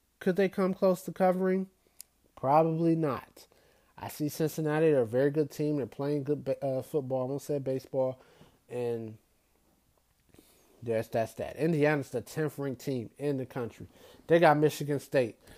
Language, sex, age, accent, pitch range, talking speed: English, male, 30-49, American, 130-150 Hz, 155 wpm